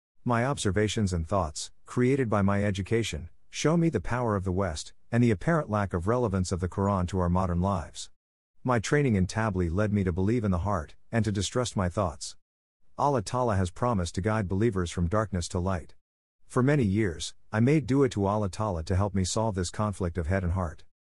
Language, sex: English, male